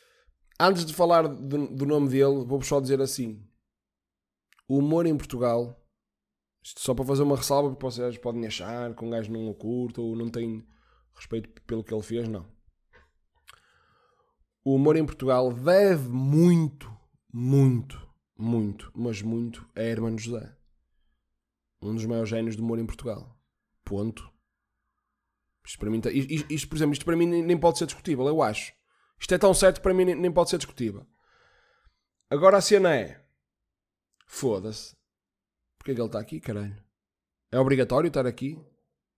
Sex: male